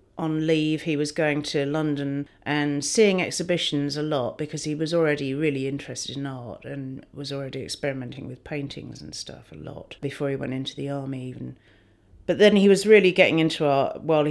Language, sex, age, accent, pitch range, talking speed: English, female, 40-59, British, 135-160 Hz, 195 wpm